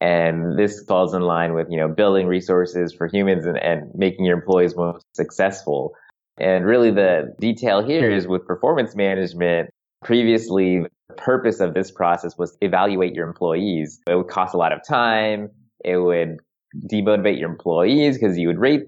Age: 20-39